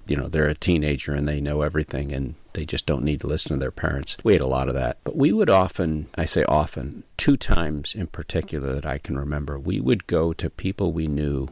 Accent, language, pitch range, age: American, English, 75-90 Hz, 40-59